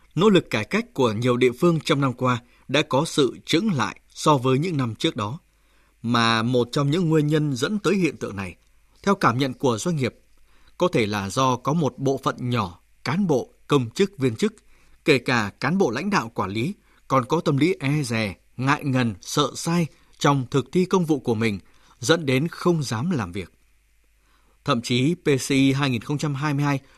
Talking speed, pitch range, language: 200 wpm, 120-160 Hz, Vietnamese